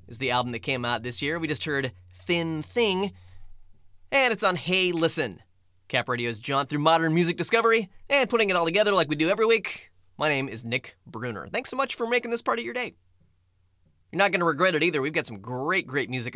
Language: English